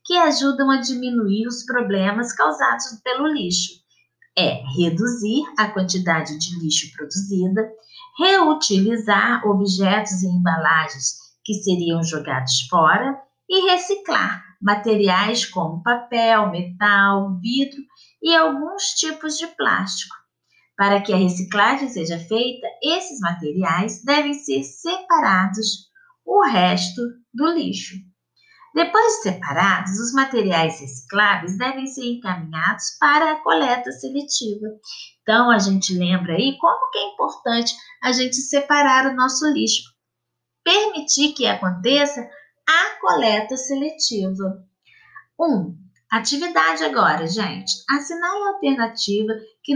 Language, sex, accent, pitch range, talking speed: Portuguese, female, Brazilian, 190-285 Hz, 115 wpm